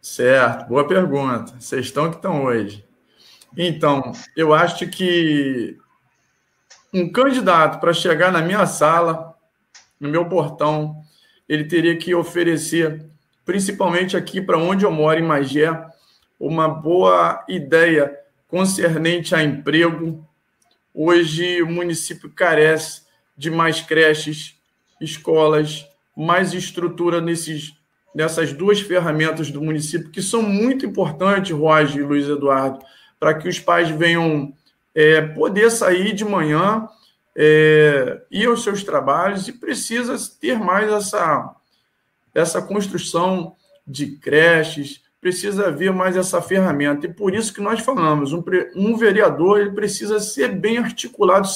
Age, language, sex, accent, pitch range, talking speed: 20-39, Portuguese, male, Brazilian, 155-195 Hz, 125 wpm